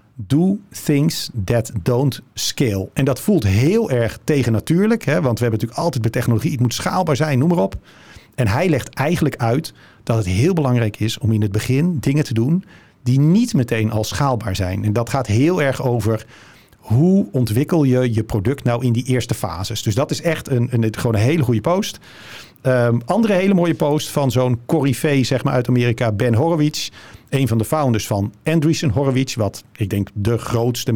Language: Dutch